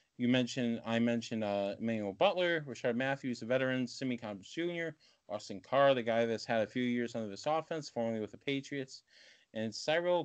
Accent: American